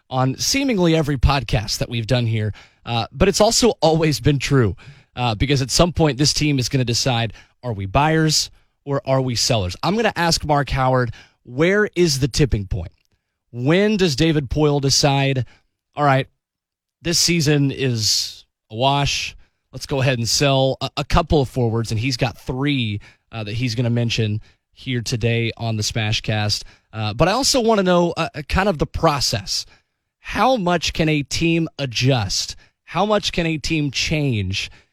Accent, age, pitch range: American, 20-39, 115-150 Hz